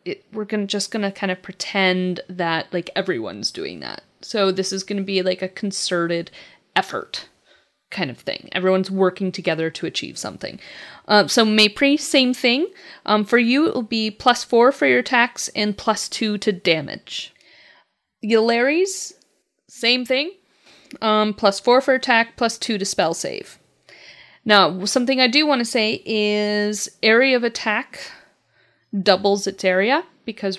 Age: 30-49